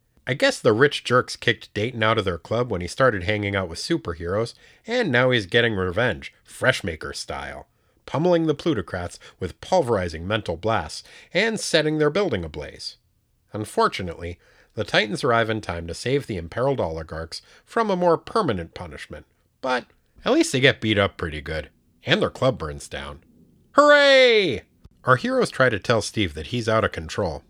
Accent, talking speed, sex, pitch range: American, 170 wpm, male, 90-140 Hz